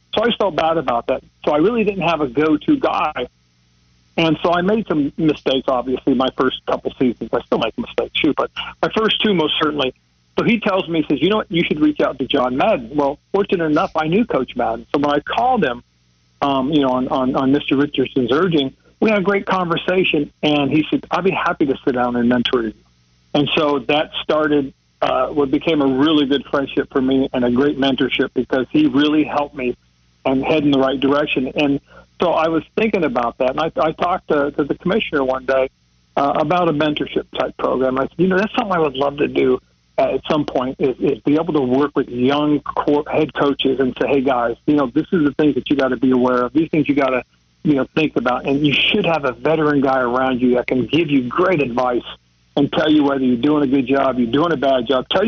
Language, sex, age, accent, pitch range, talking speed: English, male, 40-59, American, 130-155 Hz, 240 wpm